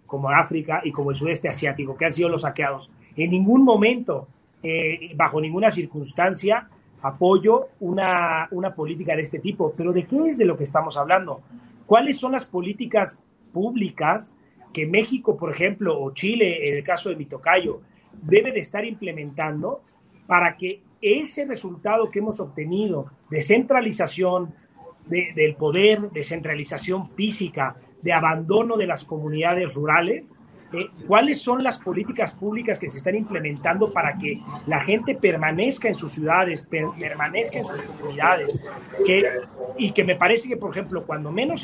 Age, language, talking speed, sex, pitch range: 30-49, Spanish, 150 wpm, male, 155-210 Hz